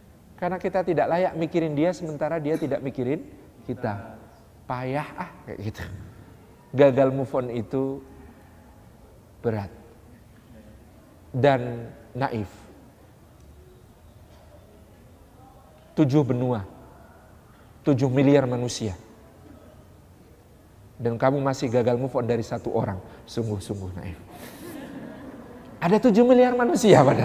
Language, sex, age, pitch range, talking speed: Indonesian, male, 40-59, 110-175 Hz, 95 wpm